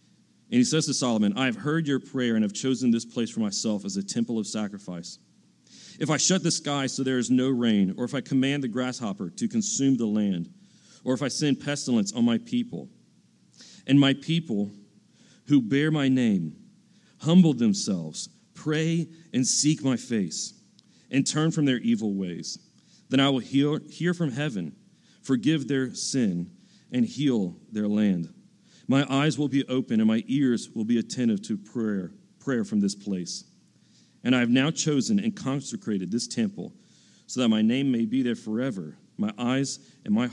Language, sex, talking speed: English, male, 180 wpm